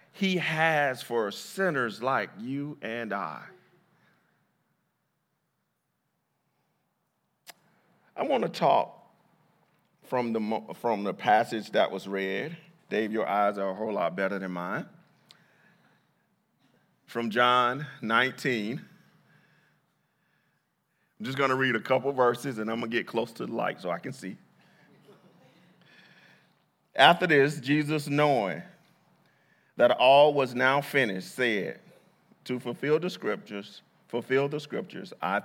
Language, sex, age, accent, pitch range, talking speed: English, male, 40-59, American, 110-150 Hz, 120 wpm